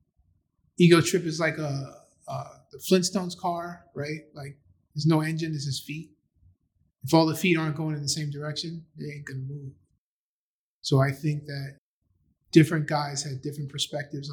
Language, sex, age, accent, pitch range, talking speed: English, male, 20-39, American, 140-160 Hz, 165 wpm